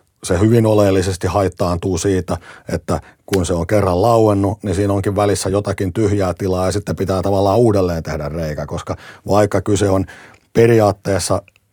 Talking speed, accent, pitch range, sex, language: 155 wpm, native, 95-105 Hz, male, Finnish